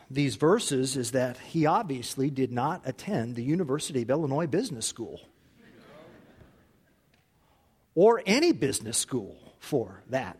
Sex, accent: male, American